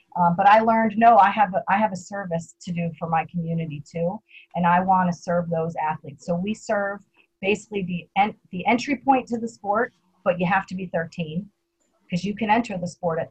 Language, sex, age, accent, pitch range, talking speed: English, female, 40-59, American, 175-230 Hz, 225 wpm